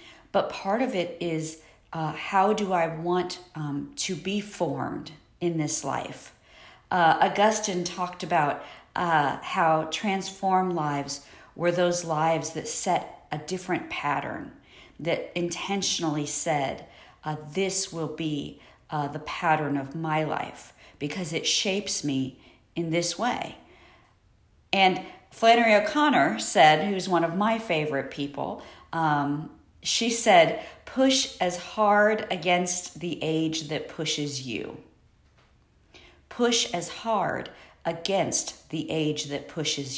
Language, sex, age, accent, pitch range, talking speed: English, female, 50-69, American, 155-195 Hz, 125 wpm